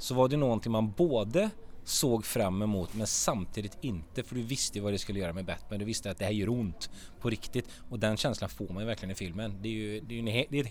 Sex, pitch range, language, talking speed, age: male, 105-145 Hz, English, 275 wpm, 30-49